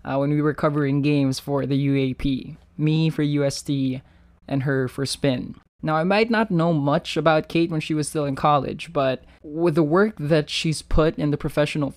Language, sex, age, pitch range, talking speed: English, male, 20-39, 135-155 Hz, 200 wpm